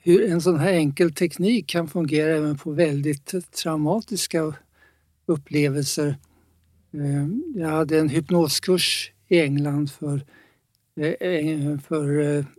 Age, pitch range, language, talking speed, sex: 60-79, 145-175 Hz, English, 100 wpm, male